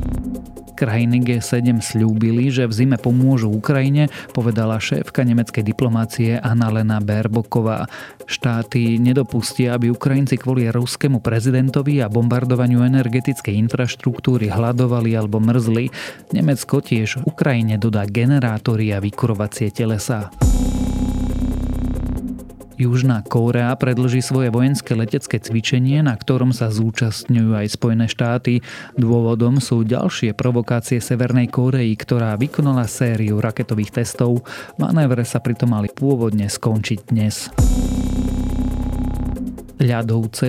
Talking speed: 100 wpm